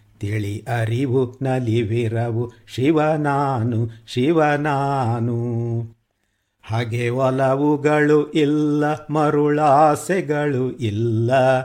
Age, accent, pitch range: 50-69, native, 115-145 Hz